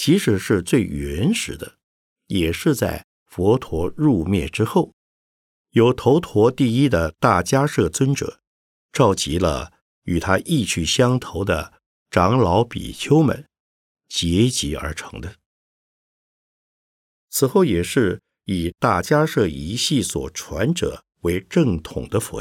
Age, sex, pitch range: 50-69, male, 80-135 Hz